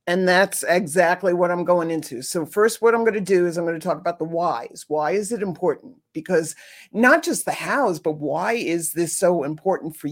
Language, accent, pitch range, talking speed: English, American, 165-210 Hz, 225 wpm